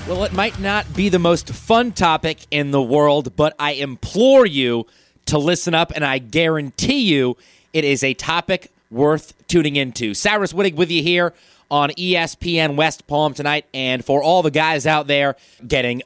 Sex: male